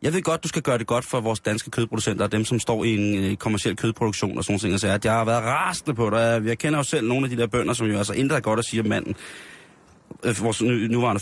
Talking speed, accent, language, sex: 280 wpm, native, Danish, male